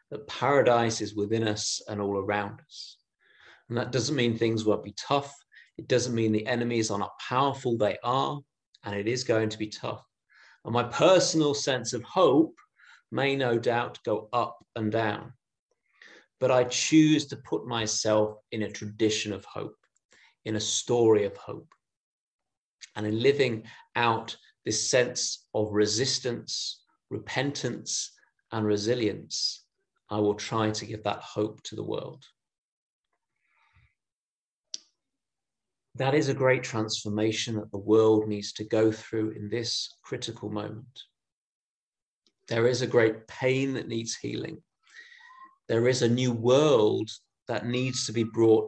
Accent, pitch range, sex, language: British, 110-130 Hz, male, English